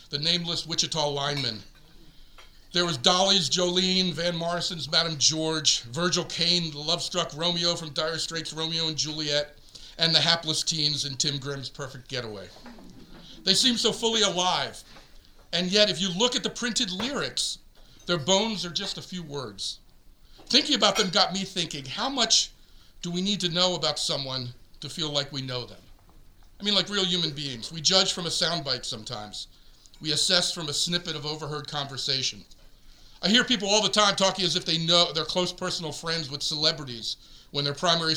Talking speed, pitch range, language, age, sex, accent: 180 wpm, 140-180 Hz, English, 50-69, male, American